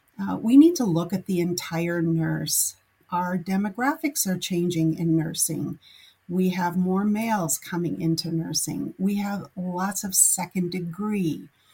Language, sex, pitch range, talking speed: English, female, 165-190 Hz, 145 wpm